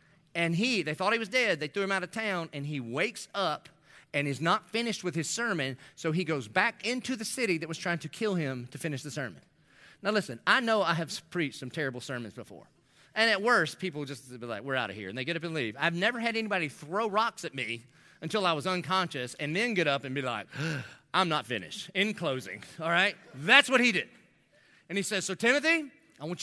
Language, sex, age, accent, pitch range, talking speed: English, male, 30-49, American, 145-200 Hz, 240 wpm